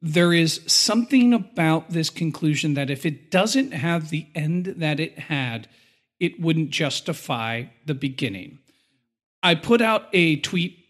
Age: 40-59